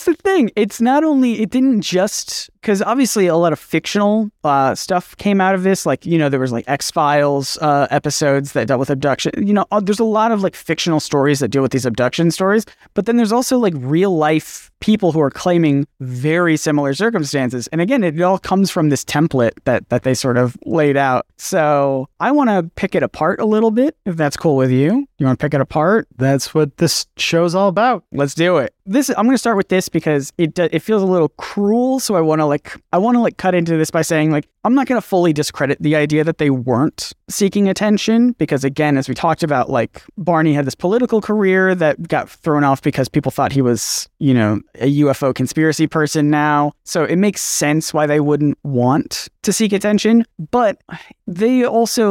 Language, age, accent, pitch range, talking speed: English, 20-39, American, 140-205 Hz, 220 wpm